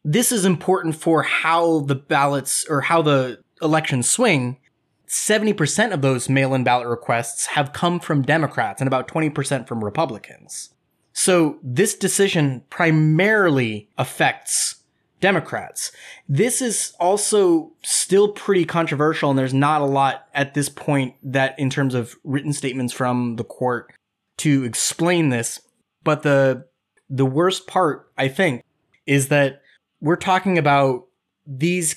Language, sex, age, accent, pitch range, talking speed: English, male, 20-39, American, 130-165 Hz, 135 wpm